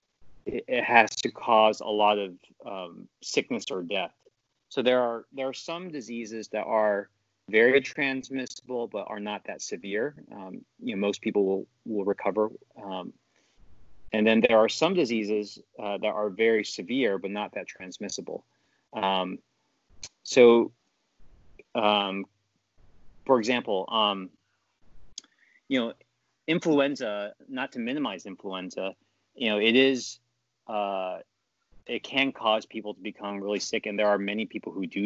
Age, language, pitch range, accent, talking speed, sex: 30-49, English, 100-125 Hz, American, 145 wpm, male